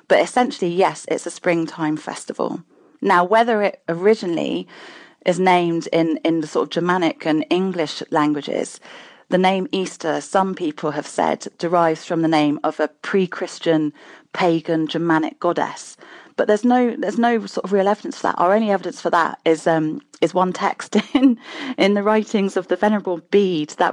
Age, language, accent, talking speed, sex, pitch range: 30-49, English, British, 175 wpm, female, 160-195 Hz